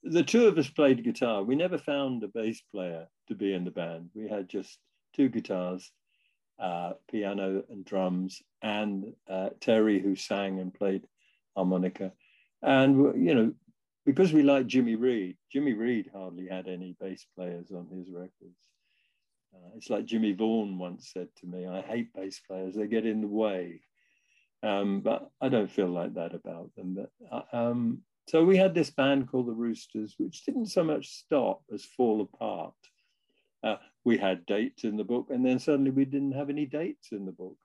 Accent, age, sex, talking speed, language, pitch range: British, 50-69, male, 180 wpm, English, 95-135 Hz